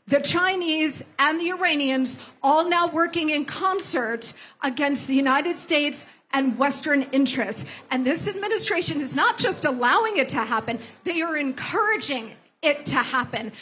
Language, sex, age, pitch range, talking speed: English, female, 40-59, 270-355 Hz, 145 wpm